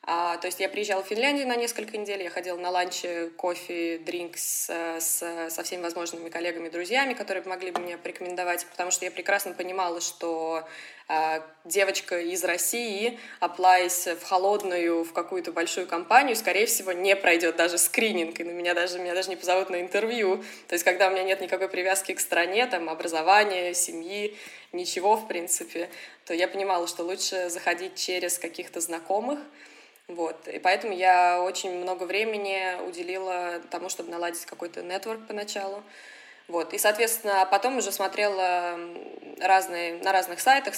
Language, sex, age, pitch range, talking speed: Russian, female, 20-39, 175-200 Hz, 155 wpm